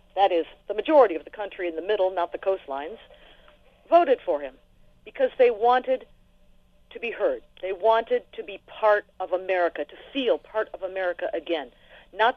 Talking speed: 175 wpm